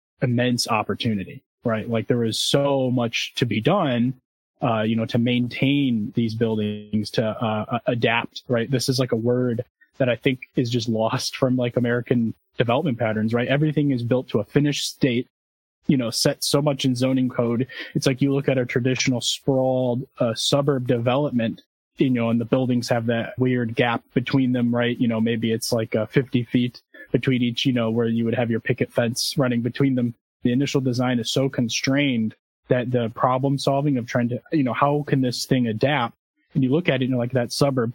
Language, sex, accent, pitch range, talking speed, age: English, male, American, 115-135 Hz, 200 wpm, 20-39